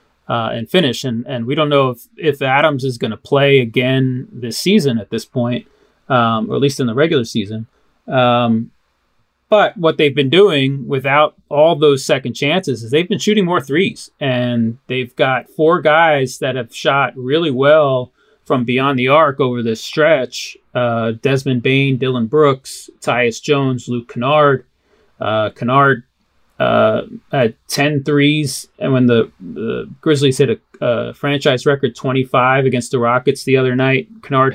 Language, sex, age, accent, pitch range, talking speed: English, male, 30-49, American, 120-145 Hz, 165 wpm